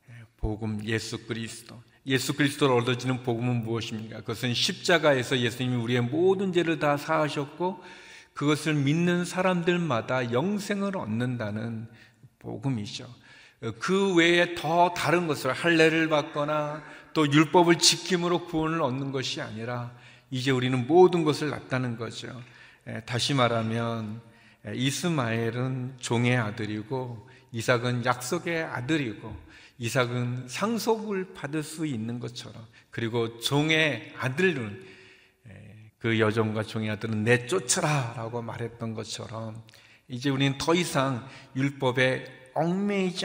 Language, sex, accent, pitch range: Korean, male, native, 115-155 Hz